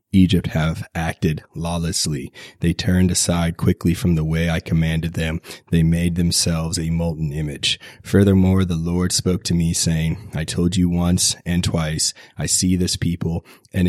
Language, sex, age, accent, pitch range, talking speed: English, male, 30-49, American, 80-90 Hz, 165 wpm